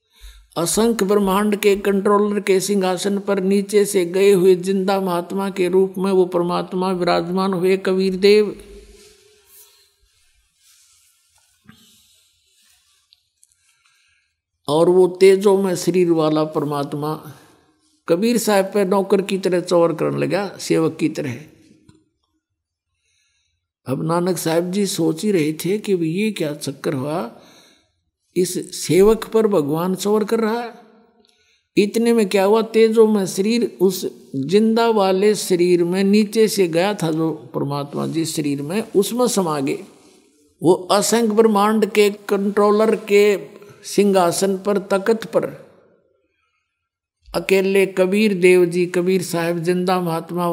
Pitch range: 165-205 Hz